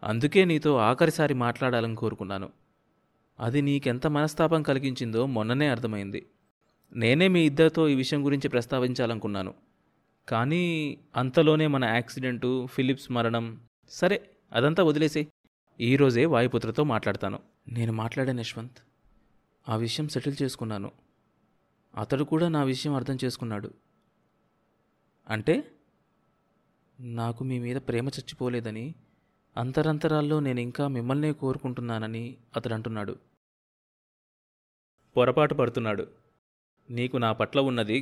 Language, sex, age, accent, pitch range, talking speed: Telugu, male, 20-39, native, 115-140 Hz, 95 wpm